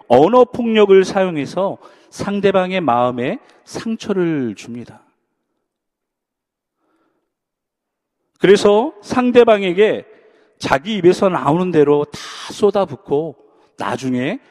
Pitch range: 135-220 Hz